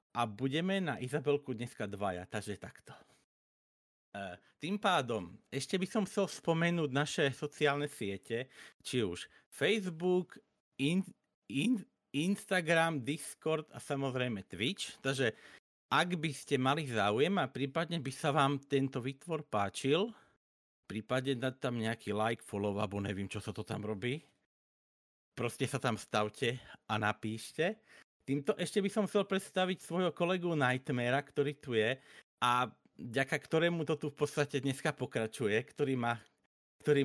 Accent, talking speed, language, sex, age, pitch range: native, 140 wpm, Czech, male, 50-69, 120-165 Hz